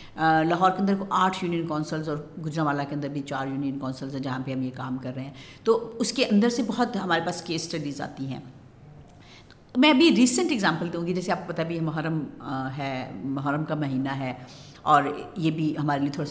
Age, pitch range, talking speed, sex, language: 60-79, 150-220 Hz, 225 wpm, female, Urdu